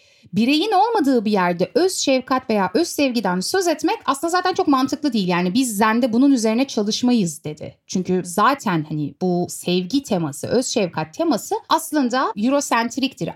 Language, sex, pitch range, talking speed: Turkish, female, 190-275 Hz, 155 wpm